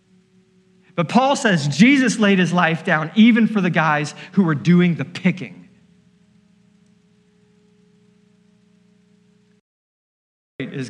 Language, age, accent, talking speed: English, 40-59, American, 100 wpm